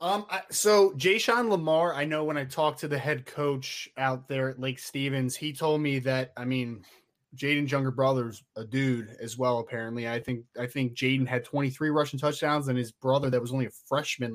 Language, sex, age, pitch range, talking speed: English, male, 20-39, 135-160 Hz, 215 wpm